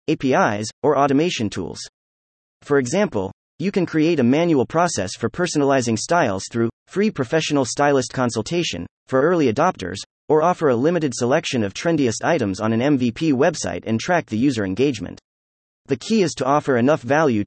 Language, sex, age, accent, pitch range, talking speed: English, male, 30-49, American, 105-155 Hz, 160 wpm